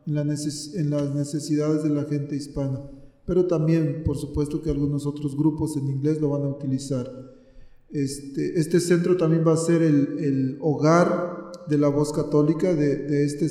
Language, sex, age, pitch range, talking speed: Spanish, male, 40-59, 145-160 Hz, 170 wpm